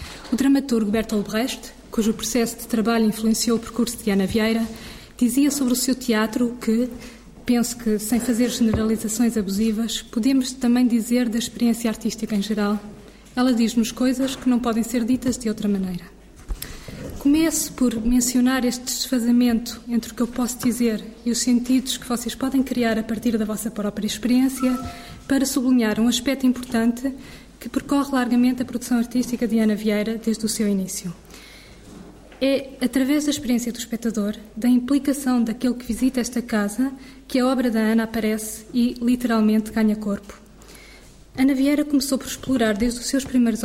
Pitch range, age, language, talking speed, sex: 220-255 Hz, 20-39, Portuguese, 165 wpm, female